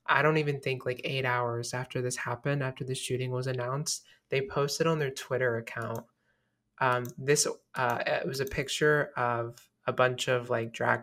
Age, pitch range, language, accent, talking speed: 20-39, 125-140 Hz, English, American, 185 wpm